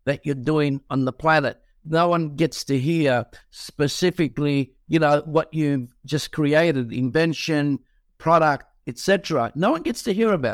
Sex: male